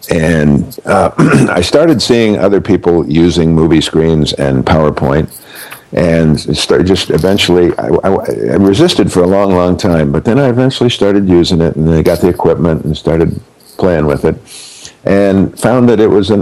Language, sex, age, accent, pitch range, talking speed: English, male, 50-69, American, 80-100 Hz, 175 wpm